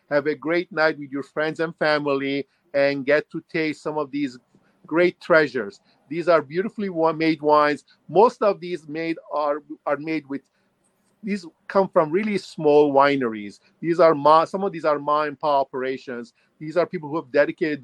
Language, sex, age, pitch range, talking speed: English, male, 50-69, 135-165 Hz, 180 wpm